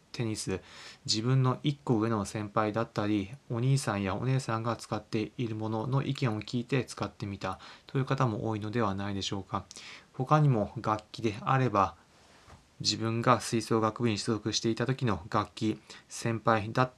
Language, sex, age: Japanese, male, 20-39